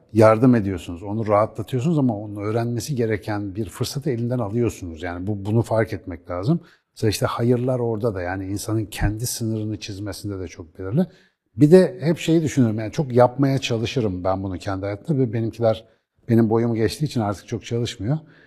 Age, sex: 60-79, male